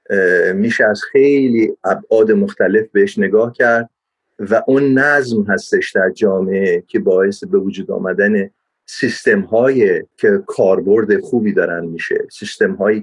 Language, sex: Persian, male